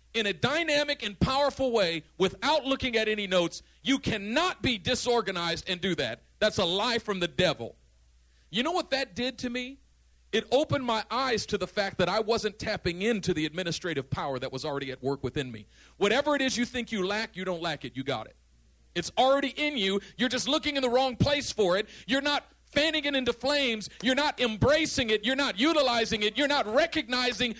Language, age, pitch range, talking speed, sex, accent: English, 40-59, 195-290 Hz, 210 wpm, male, American